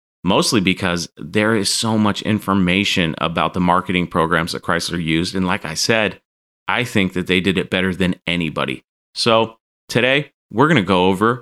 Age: 30-49